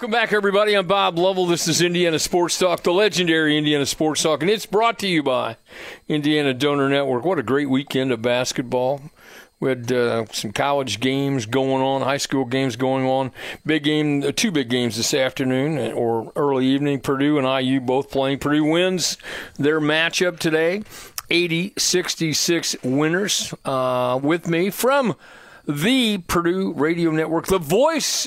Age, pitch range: 40-59, 140-185 Hz